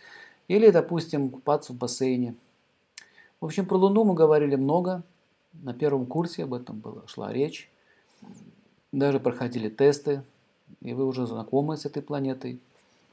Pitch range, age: 135-175 Hz, 50-69